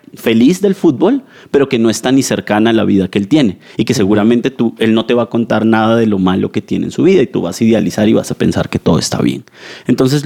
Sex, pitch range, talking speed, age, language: male, 105-135 Hz, 280 wpm, 30-49, Spanish